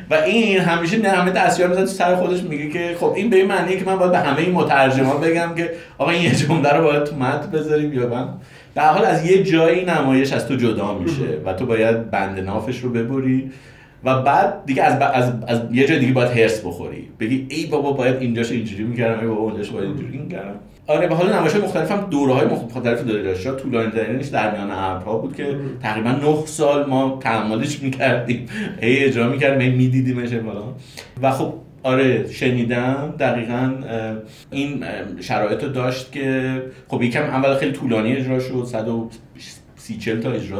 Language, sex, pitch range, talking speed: Persian, male, 115-150 Hz, 185 wpm